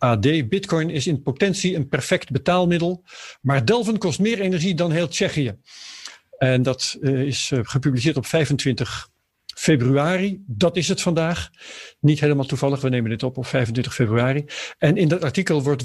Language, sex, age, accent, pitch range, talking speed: Dutch, male, 50-69, Dutch, 135-180 Hz, 160 wpm